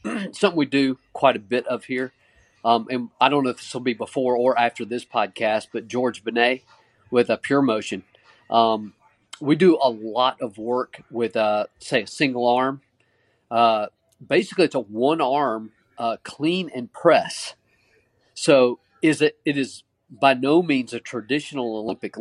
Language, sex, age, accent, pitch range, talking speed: English, male, 40-59, American, 110-135 Hz, 170 wpm